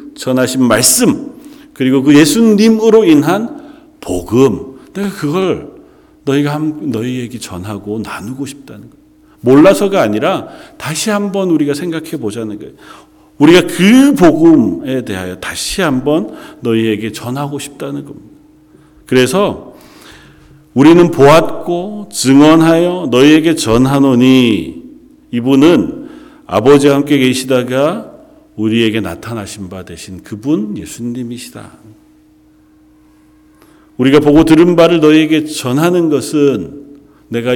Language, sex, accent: Korean, male, native